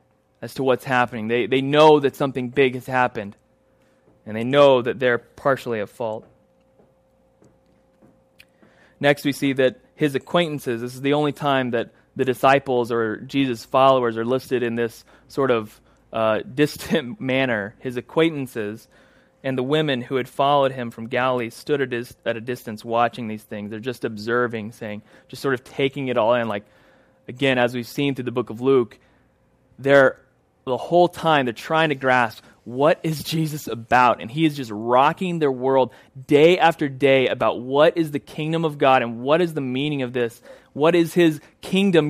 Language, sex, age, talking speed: English, male, 20-39, 180 wpm